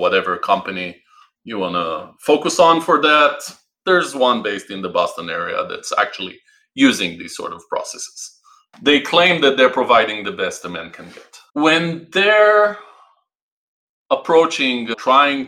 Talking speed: 145 wpm